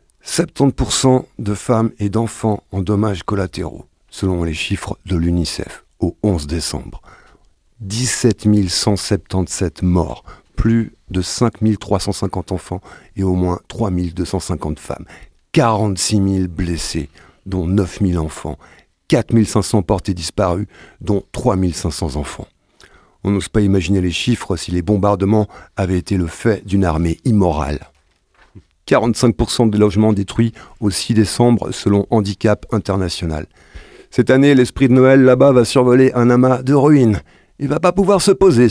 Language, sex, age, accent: French, male, 50-69, French